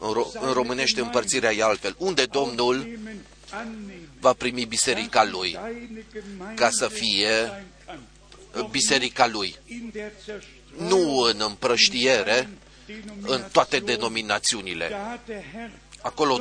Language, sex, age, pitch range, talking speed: Romanian, male, 40-59, 130-210 Hz, 85 wpm